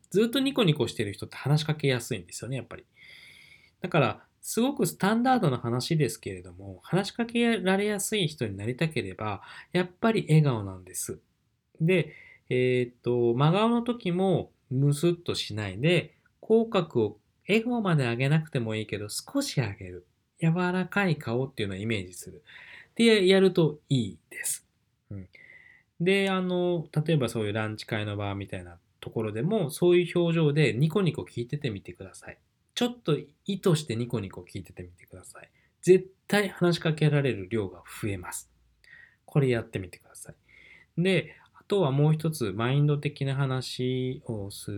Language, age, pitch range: Japanese, 20-39, 105-175 Hz